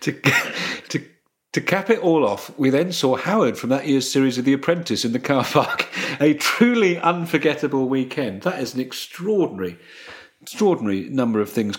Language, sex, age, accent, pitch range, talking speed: English, male, 40-59, British, 120-155 Hz, 170 wpm